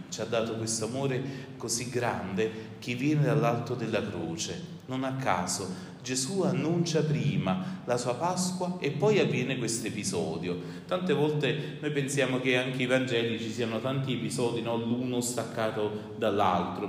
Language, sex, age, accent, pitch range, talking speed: Italian, male, 30-49, native, 110-145 Hz, 150 wpm